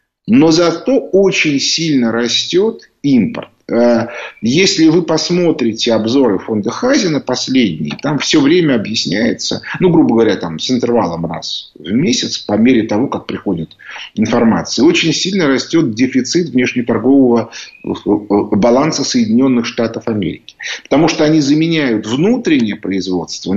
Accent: native